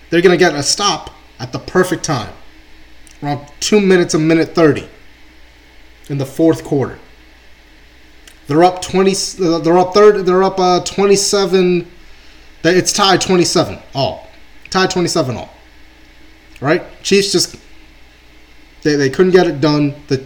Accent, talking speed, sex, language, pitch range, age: American, 135 wpm, male, English, 125-180 Hz, 30-49